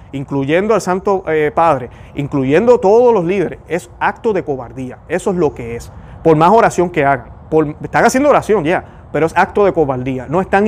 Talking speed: 190 wpm